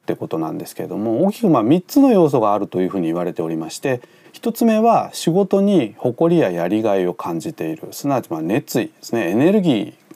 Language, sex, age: Japanese, male, 40-59